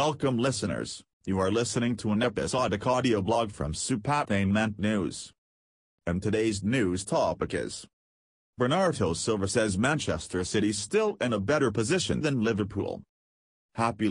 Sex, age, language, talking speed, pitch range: male, 40-59, English, 130 wpm, 95-115 Hz